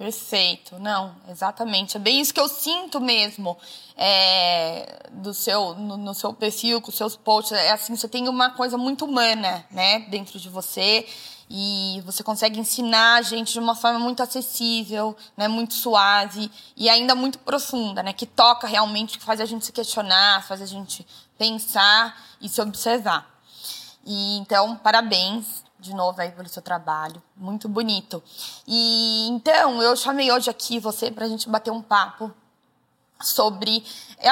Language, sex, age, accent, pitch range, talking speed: Portuguese, female, 20-39, Brazilian, 200-230 Hz, 165 wpm